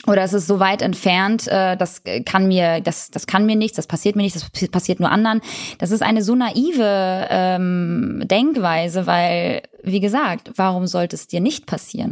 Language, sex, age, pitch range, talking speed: German, female, 20-39, 155-195 Hz, 190 wpm